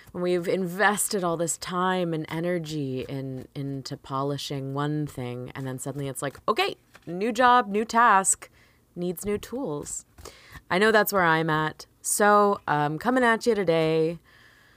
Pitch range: 130-185 Hz